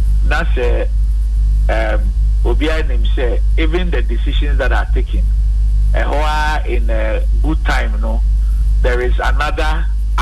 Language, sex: English, male